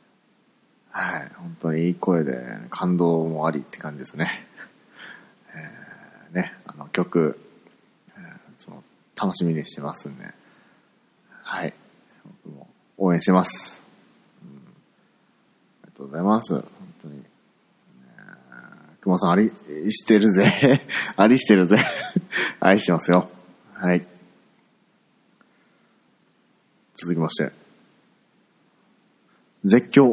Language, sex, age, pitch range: Japanese, male, 40-59, 85-105 Hz